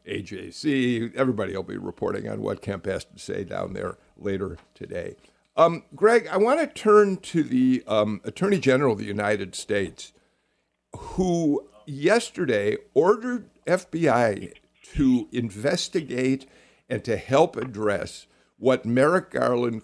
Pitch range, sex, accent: 110-165 Hz, male, American